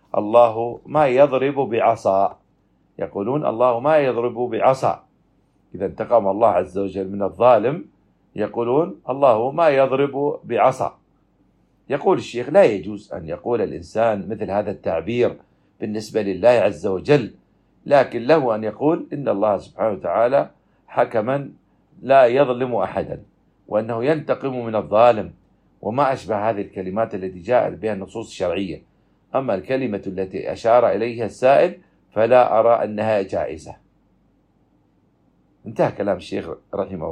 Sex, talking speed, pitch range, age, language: male, 120 wpm, 100-130 Hz, 50-69, Arabic